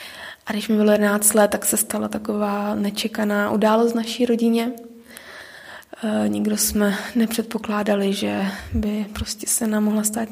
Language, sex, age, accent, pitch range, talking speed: Czech, female, 20-39, native, 210-230 Hz, 150 wpm